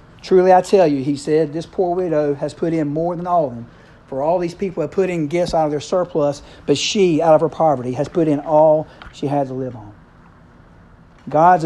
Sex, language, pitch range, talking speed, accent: male, English, 140-170 Hz, 230 wpm, American